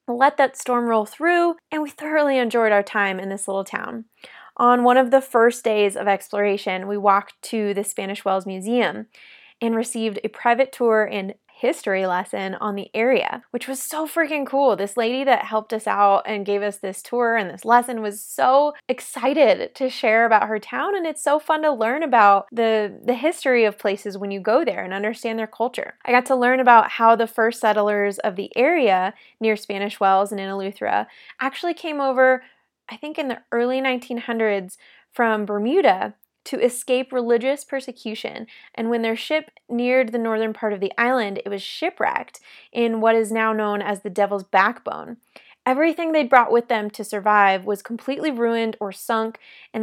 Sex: female